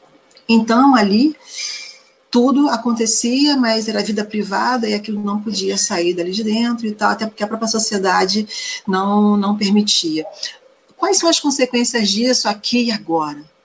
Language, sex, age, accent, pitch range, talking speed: Portuguese, female, 40-59, Brazilian, 195-245 Hz, 150 wpm